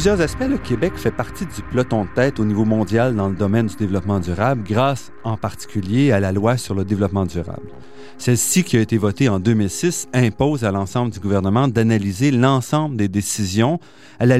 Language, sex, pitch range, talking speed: French, male, 105-145 Hz, 195 wpm